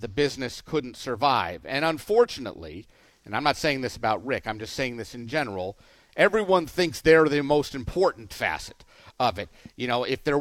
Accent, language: American, English